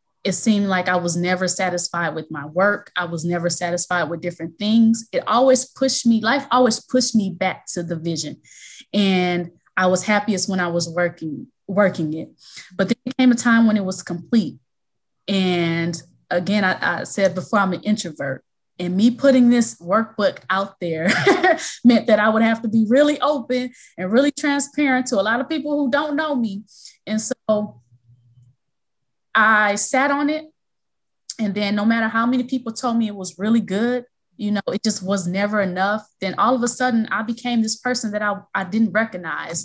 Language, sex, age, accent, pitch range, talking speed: English, female, 20-39, American, 180-240 Hz, 190 wpm